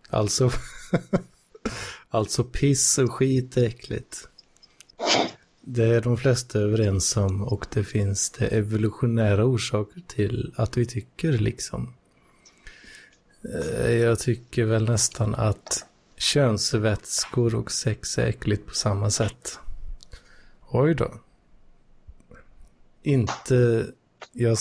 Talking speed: 100 wpm